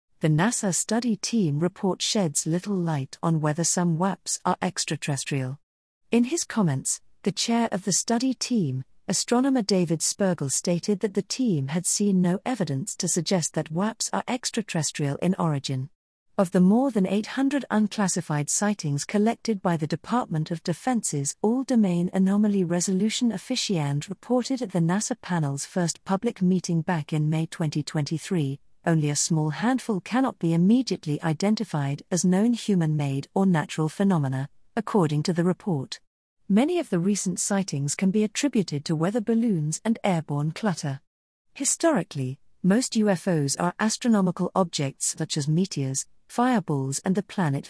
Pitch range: 155-210 Hz